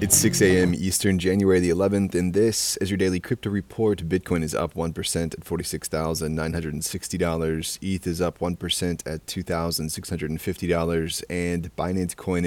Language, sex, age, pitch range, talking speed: English, male, 20-39, 80-90 Hz, 140 wpm